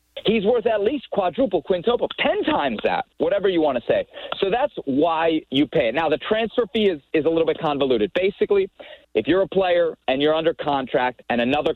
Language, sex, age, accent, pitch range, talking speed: English, male, 40-59, American, 135-190 Hz, 210 wpm